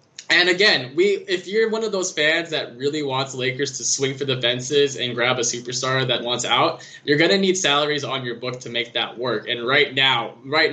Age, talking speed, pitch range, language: 20-39, 230 wpm, 120-155 Hz, English